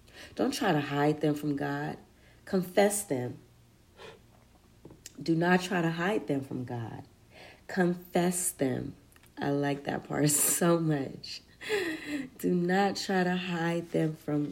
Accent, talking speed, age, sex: American, 130 wpm, 40-59, female